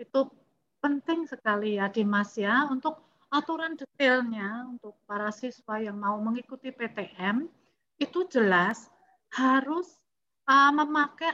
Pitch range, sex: 225-300 Hz, female